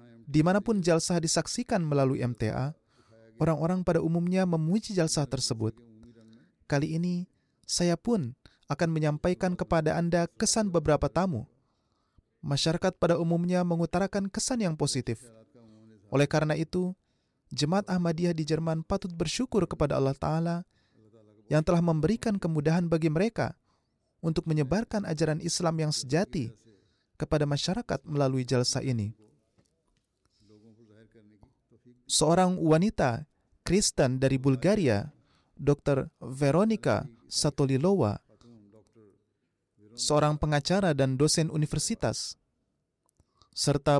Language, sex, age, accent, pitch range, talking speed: Indonesian, male, 20-39, native, 125-175 Hz, 100 wpm